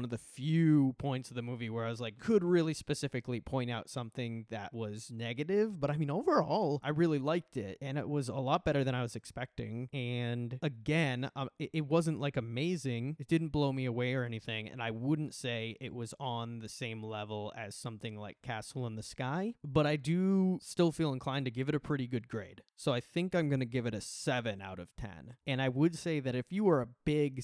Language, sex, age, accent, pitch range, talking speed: English, male, 20-39, American, 115-145 Hz, 225 wpm